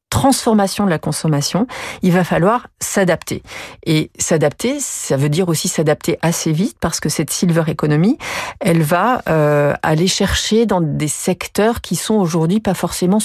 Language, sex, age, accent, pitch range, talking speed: French, female, 40-59, French, 150-180 Hz, 160 wpm